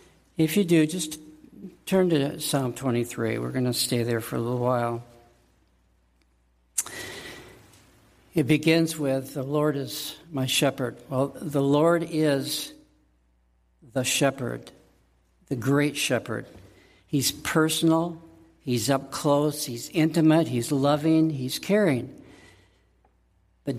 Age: 60-79